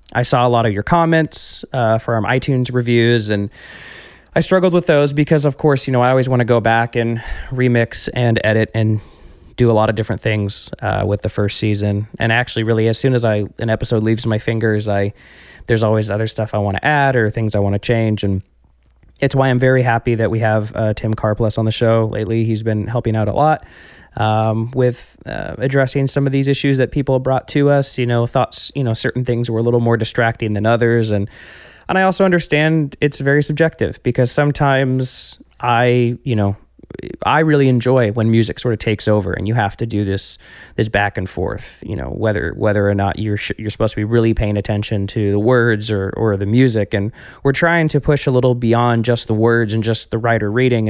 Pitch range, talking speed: 105-125 Hz, 225 wpm